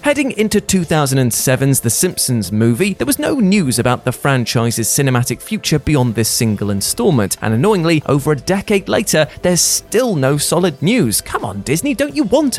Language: English